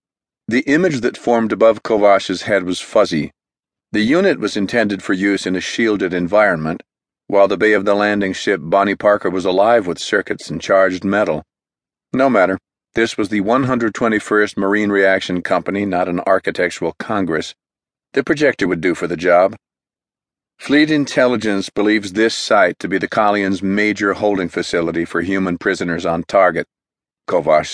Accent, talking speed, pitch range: American, 160 wpm, 95-110 Hz